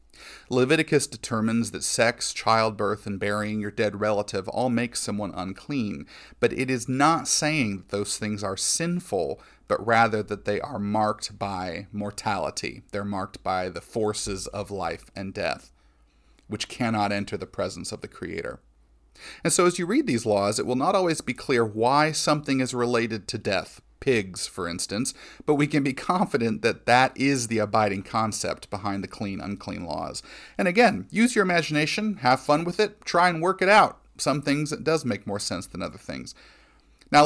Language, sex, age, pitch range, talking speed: English, male, 40-59, 105-150 Hz, 180 wpm